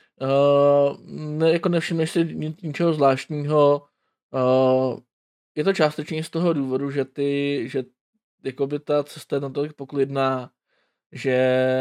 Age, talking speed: 20-39, 125 wpm